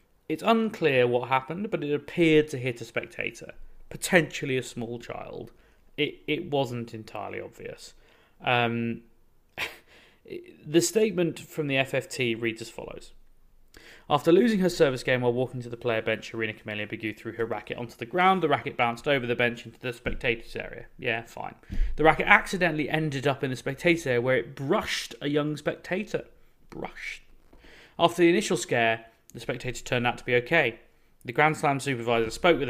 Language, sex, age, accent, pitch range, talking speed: English, male, 30-49, British, 115-160 Hz, 170 wpm